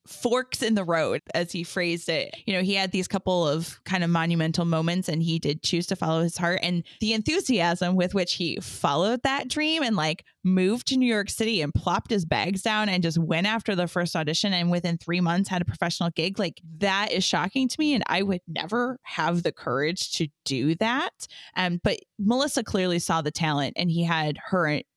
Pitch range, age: 160-205 Hz, 20-39